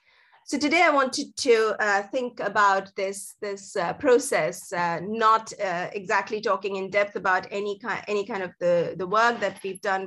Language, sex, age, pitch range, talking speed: English, female, 30-49, 190-220 Hz, 185 wpm